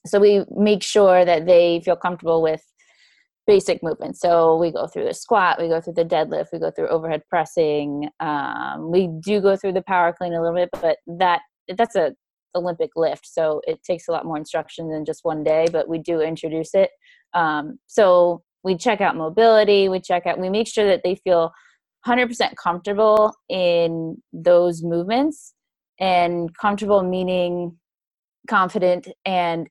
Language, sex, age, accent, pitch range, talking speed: English, female, 20-39, American, 165-195 Hz, 175 wpm